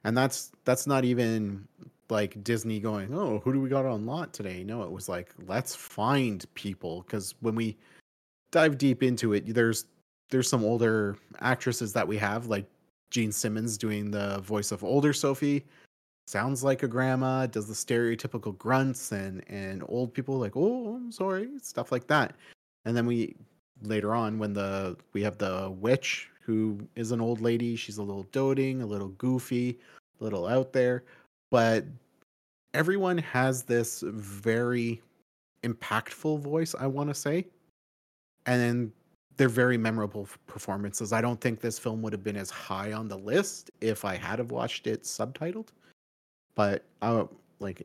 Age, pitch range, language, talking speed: 30-49, 105-130 Hz, English, 165 wpm